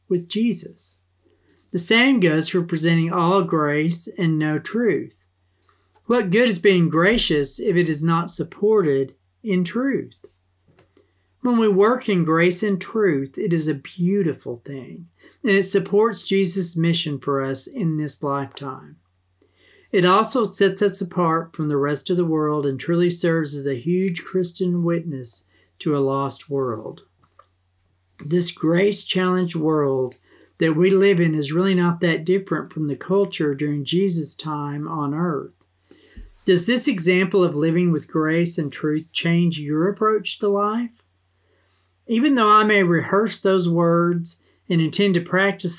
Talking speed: 150 wpm